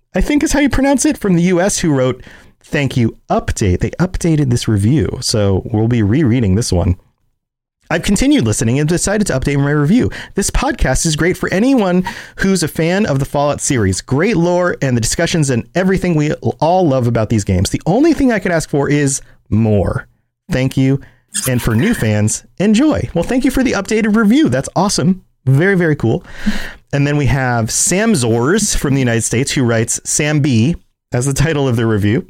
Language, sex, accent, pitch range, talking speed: English, male, American, 115-175 Hz, 200 wpm